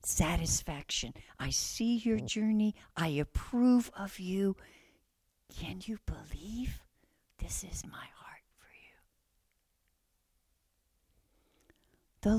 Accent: American